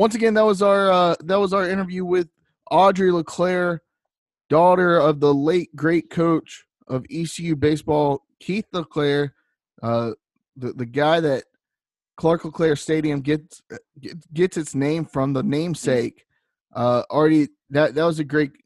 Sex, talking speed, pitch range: male, 150 wpm, 125-155 Hz